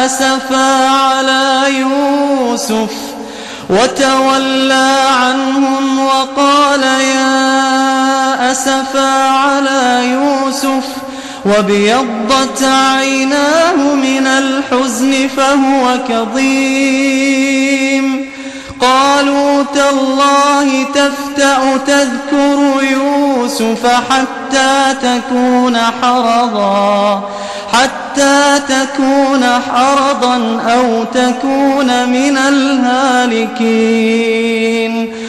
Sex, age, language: male, 20-39, Arabic